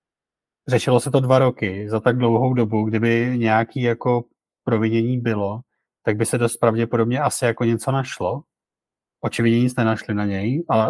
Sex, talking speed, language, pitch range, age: male, 160 wpm, Czech, 110-120 Hz, 30-49